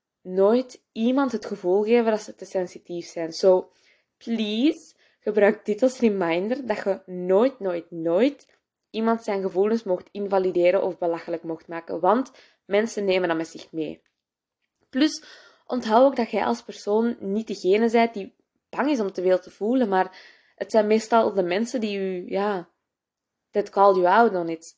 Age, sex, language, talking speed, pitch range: 20-39, female, Dutch, 170 wpm, 185-235 Hz